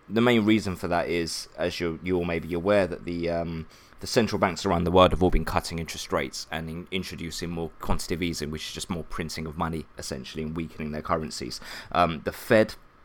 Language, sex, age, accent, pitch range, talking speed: English, male, 20-39, British, 80-95 Hz, 225 wpm